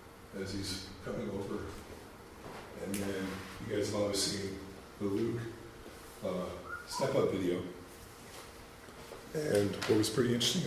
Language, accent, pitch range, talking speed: English, American, 90-105 Hz, 120 wpm